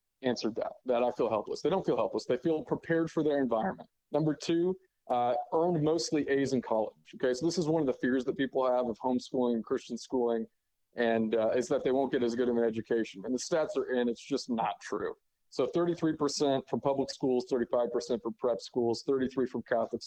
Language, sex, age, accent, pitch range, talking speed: English, male, 40-59, American, 120-150 Hz, 220 wpm